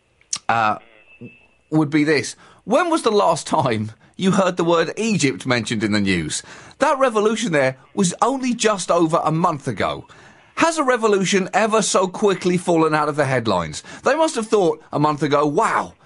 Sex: male